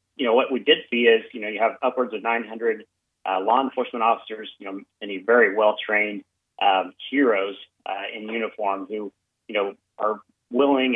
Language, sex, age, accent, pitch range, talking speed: English, male, 30-49, American, 105-125 Hz, 180 wpm